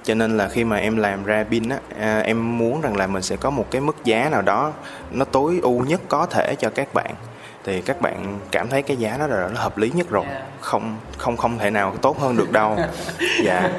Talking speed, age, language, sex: 255 wpm, 20-39, Vietnamese, male